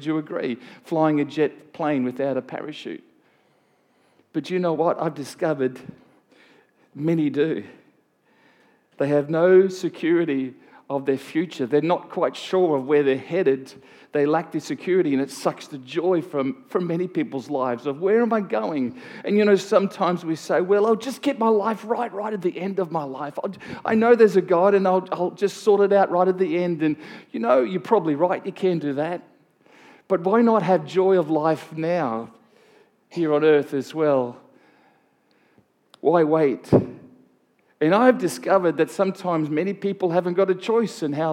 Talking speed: 185 wpm